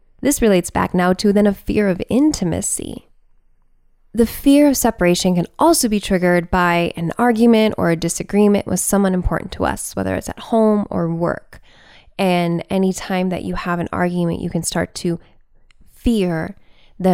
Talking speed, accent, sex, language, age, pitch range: 170 wpm, American, female, English, 10-29, 170-215 Hz